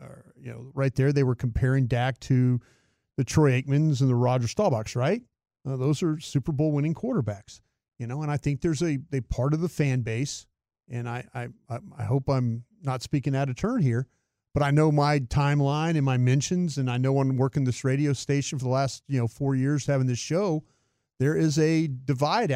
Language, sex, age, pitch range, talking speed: English, male, 40-59, 125-155 Hz, 215 wpm